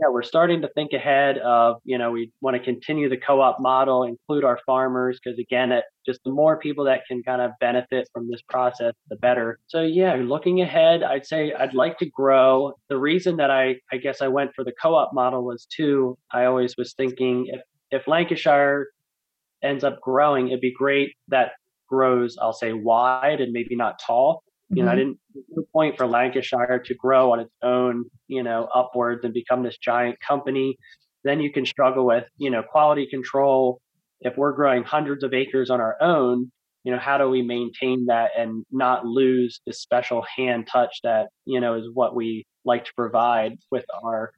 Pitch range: 120-140 Hz